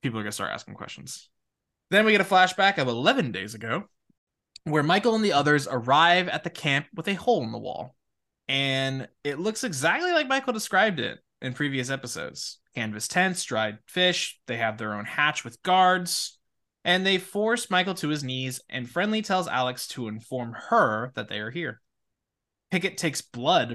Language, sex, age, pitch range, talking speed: English, male, 20-39, 110-165 Hz, 185 wpm